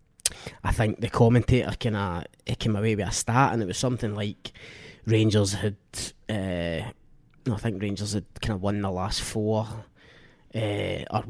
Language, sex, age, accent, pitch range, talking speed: English, male, 20-39, British, 110-125 Hz, 175 wpm